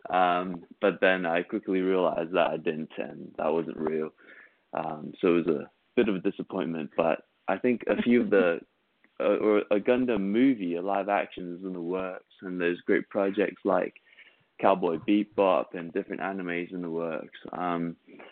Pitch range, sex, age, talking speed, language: 85-100 Hz, male, 20-39, 180 wpm, English